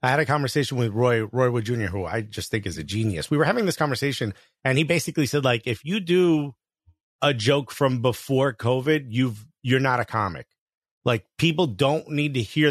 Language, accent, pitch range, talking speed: English, American, 120-150 Hz, 210 wpm